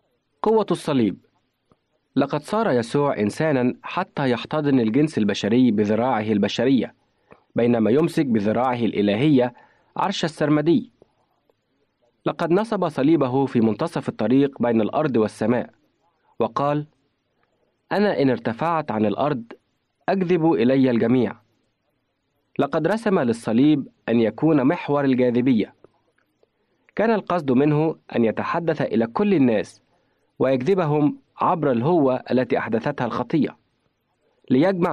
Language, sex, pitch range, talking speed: Arabic, male, 120-160 Hz, 100 wpm